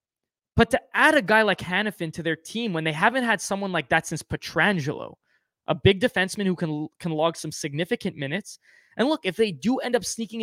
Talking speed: 215 wpm